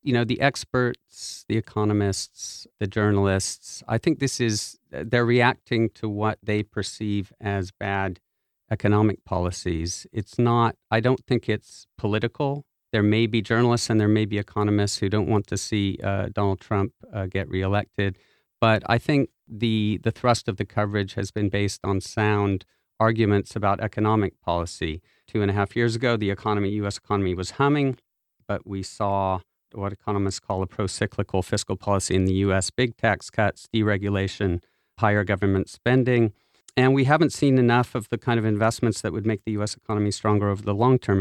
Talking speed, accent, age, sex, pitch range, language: 175 wpm, American, 50-69, male, 100-115 Hz, English